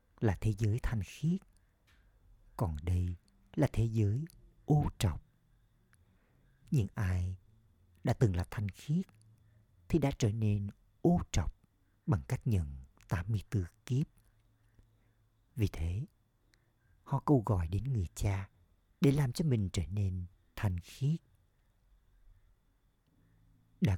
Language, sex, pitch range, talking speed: Vietnamese, male, 90-120 Hz, 120 wpm